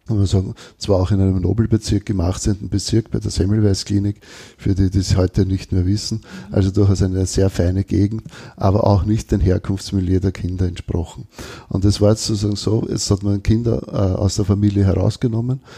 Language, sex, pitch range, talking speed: German, male, 95-110 Hz, 195 wpm